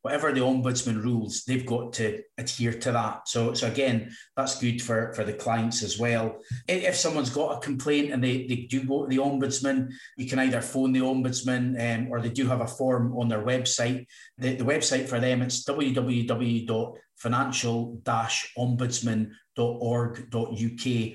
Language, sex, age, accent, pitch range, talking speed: English, male, 30-49, British, 115-130 Hz, 160 wpm